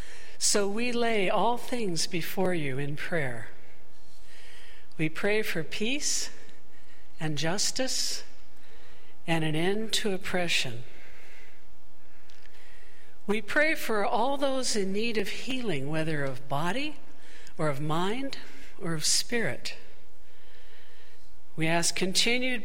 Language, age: English, 60-79